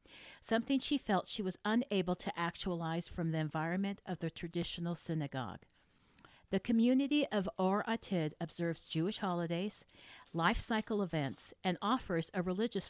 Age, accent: 50-69, American